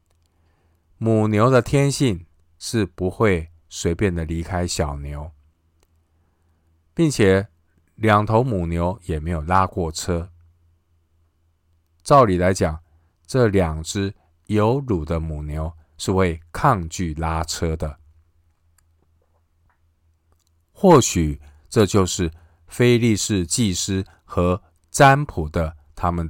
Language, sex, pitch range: Chinese, male, 80-95 Hz